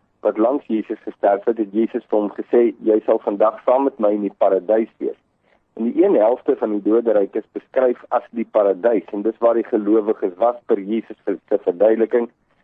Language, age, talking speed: English, 50-69, 200 wpm